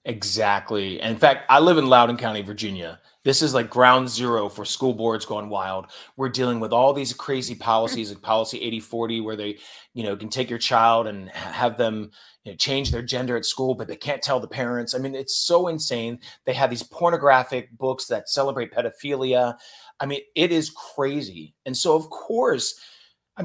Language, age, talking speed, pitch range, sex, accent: English, 30-49, 195 wpm, 110-140 Hz, male, American